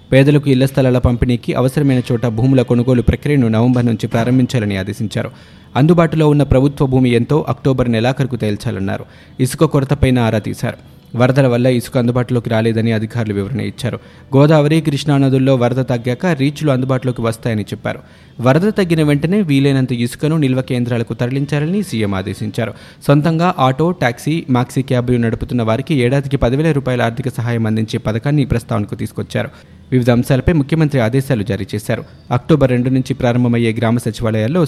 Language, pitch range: Telugu, 115-140 Hz